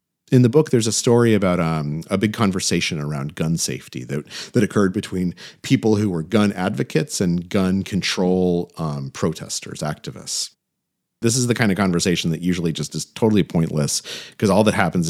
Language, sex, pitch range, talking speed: English, male, 90-140 Hz, 180 wpm